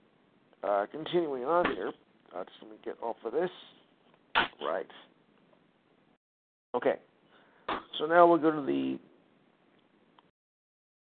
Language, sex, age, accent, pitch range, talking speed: English, male, 50-69, American, 135-165 Hz, 90 wpm